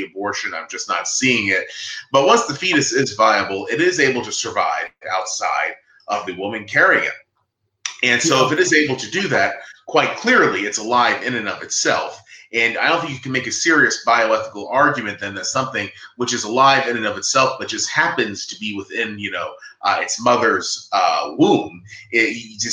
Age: 30-49